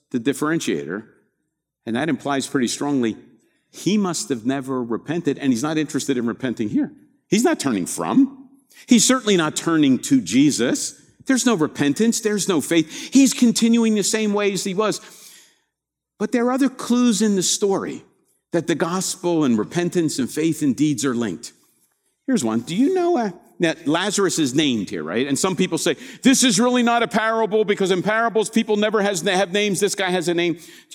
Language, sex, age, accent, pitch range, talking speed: English, male, 50-69, American, 155-230 Hz, 190 wpm